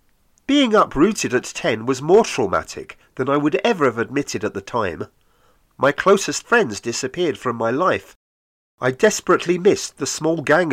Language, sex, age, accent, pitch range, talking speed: English, male, 40-59, British, 110-165 Hz, 160 wpm